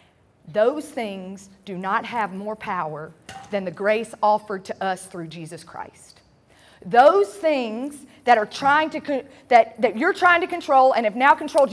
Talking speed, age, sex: 170 wpm, 40-59, female